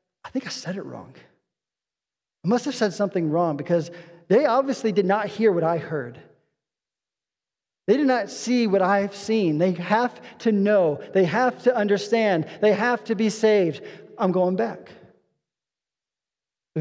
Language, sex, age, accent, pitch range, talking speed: English, male, 40-59, American, 155-205 Hz, 160 wpm